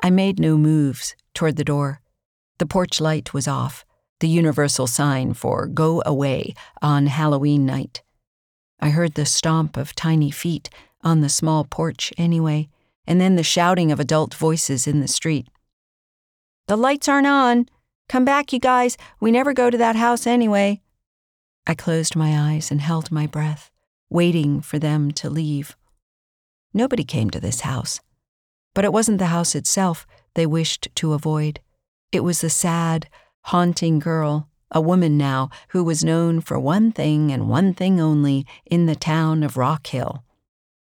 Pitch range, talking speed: 145-170 Hz, 165 wpm